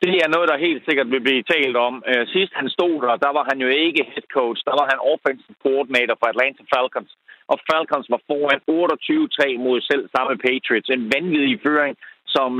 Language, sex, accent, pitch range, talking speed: Danish, male, native, 130-175 Hz, 200 wpm